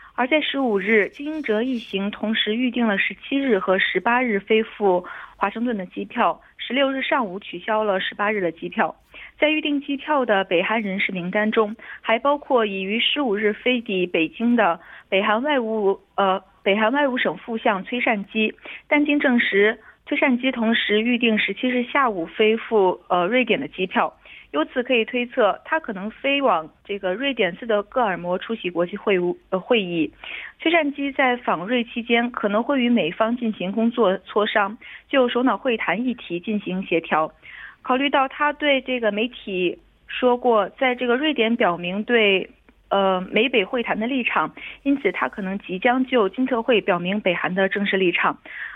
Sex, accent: female, Chinese